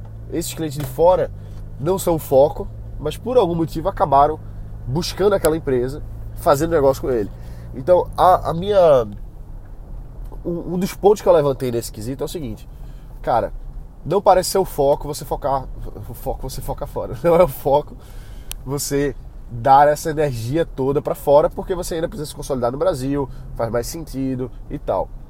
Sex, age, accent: male, 20-39, Brazilian